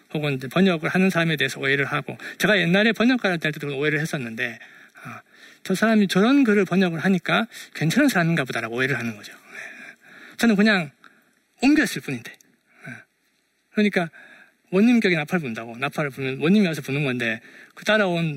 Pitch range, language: 130-195 Hz, Korean